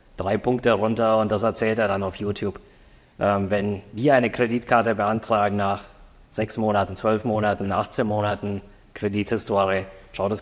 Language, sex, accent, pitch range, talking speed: German, male, German, 100-115 Hz, 150 wpm